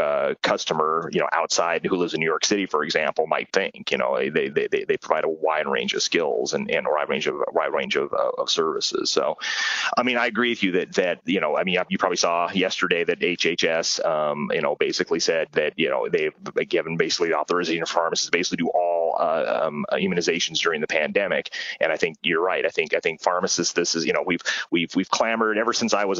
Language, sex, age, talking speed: Italian, male, 30-49, 245 wpm